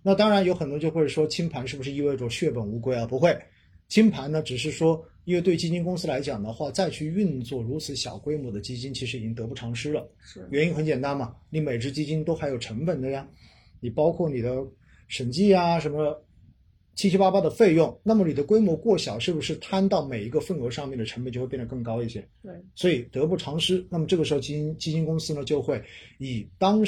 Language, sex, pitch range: Chinese, male, 120-170 Hz